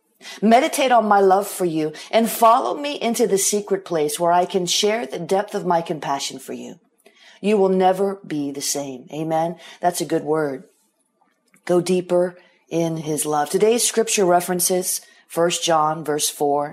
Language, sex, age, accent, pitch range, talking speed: English, female, 40-59, American, 160-220 Hz, 170 wpm